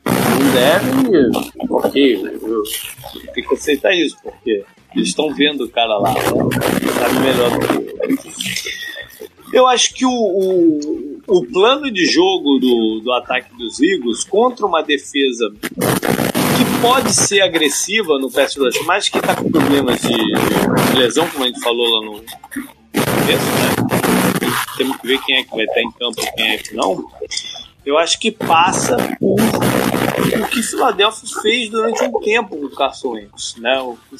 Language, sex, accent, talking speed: Portuguese, male, Brazilian, 165 wpm